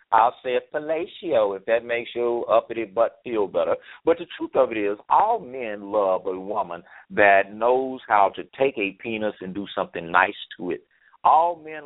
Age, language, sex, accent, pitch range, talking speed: 50-69, English, male, American, 105-140 Hz, 190 wpm